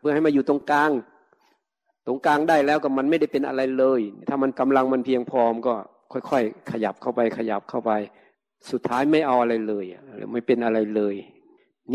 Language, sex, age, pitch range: Thai, male, 60-79, 120-150 Hz